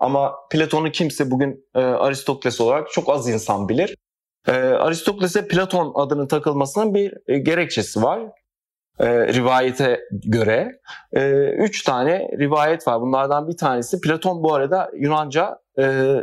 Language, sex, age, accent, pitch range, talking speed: Turkish, male, 40-59, native, 125-165 Hz, 135 wpm